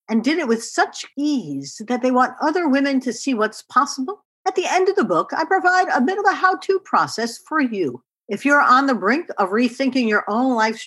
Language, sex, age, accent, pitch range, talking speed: English, female, 60-79, American, 185-290 Hz, 225 wpm